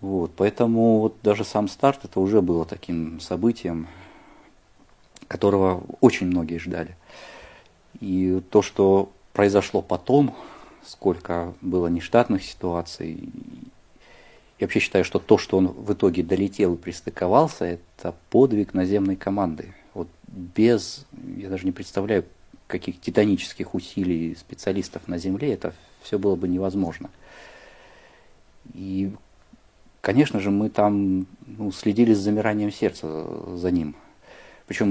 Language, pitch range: Russian, 90-105 Hz